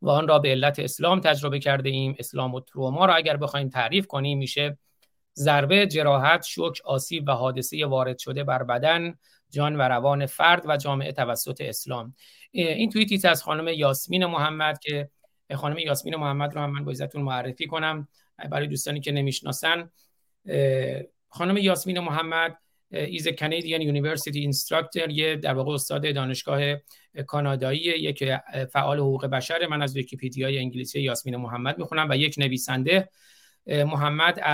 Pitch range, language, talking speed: 135-160 Hz, Persian, 140 wpm